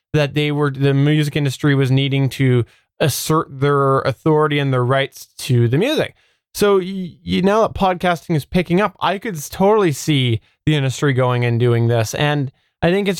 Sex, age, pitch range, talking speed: male, 20-39, 125-160 Hz, 185 wpm